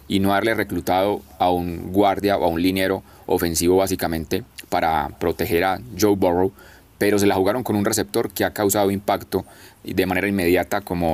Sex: male